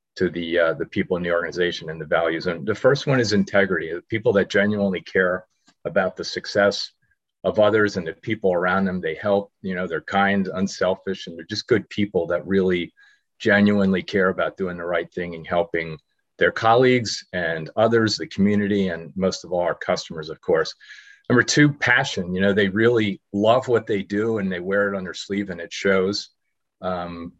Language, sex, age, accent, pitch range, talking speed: English, male, 40-59, American, 90-105 Hz, 195 wpm